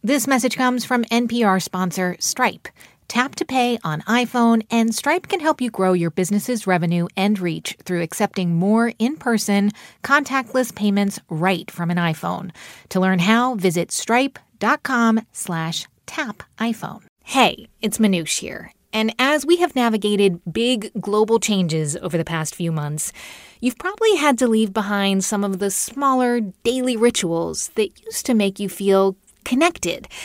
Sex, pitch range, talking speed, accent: female, 185-240 Hz, 150 wpm, American